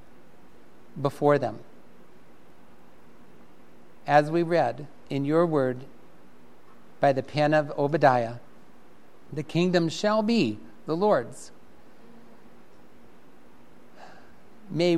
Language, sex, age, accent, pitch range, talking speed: English, male, 60-79, American, 130-165 Hz, 80 wpm